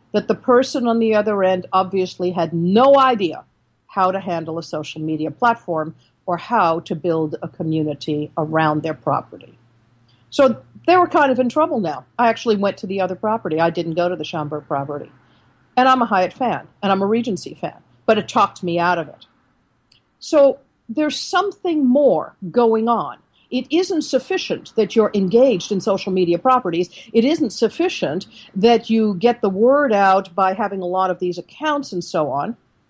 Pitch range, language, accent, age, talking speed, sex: 175-240 Hz, English, American, 50-69, 185 wpm, female